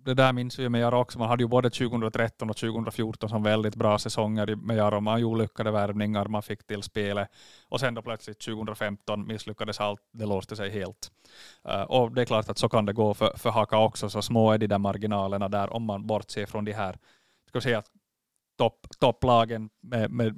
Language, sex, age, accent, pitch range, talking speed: Swedish, male, 30-49, Finnish, 105-125 Hz, 195 wpm